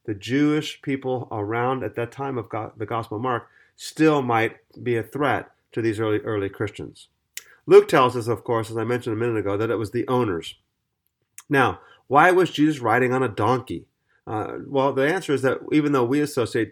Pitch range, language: 115-140 Hz, English